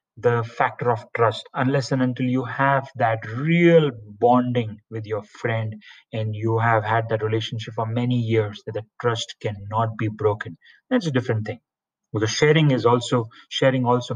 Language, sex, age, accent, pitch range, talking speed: English, male, 30-49, Indian, 110-130 Hz, 170 wpm